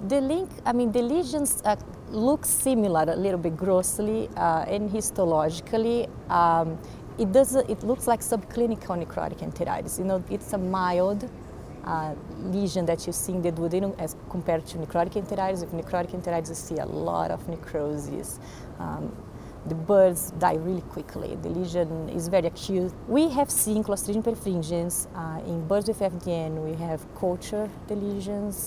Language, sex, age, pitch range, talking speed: English, female, 30-49, 170-210 Hz, 165 wpm